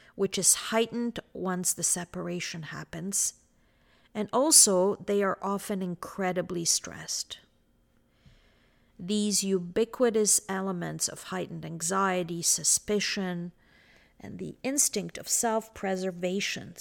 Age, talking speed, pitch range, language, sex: 50-69, 95 wpm, 170-205 Hz, English, female